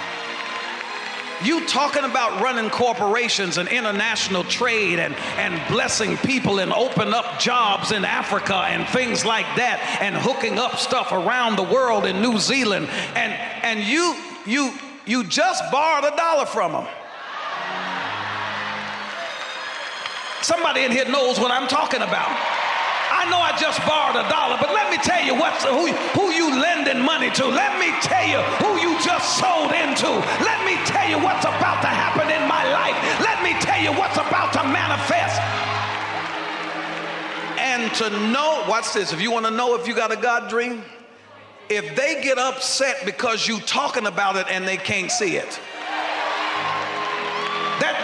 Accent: American